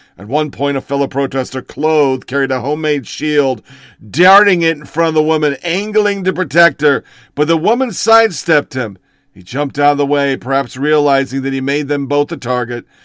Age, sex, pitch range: 50-69, male, 140-175 Hz